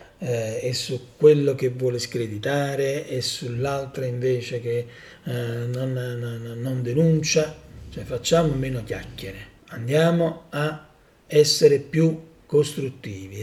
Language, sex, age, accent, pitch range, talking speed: Italian, male, 40-59, native, 125-160 Hz, 110 wpm